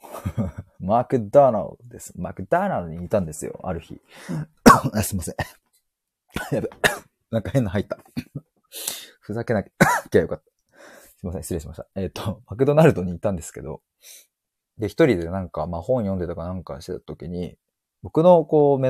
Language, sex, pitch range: Japanese, male, 90-150 Hz